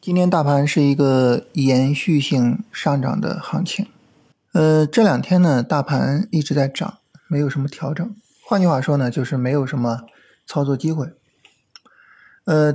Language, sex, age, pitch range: Chinese, male, 20-39, 135-175 Hz